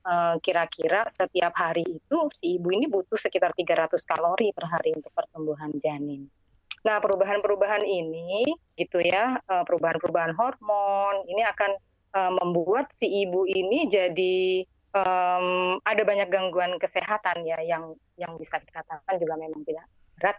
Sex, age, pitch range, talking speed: female, 30-49, 170-210 Hz, 130 wpm